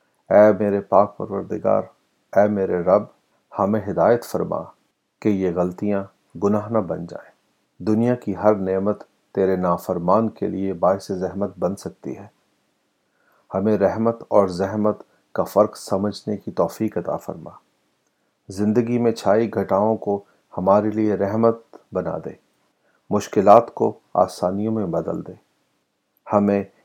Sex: male